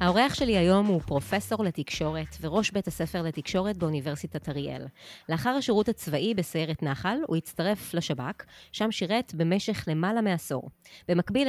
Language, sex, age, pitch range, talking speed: Hebrew, female, 30-49, 155-210 Hz, 135 wpm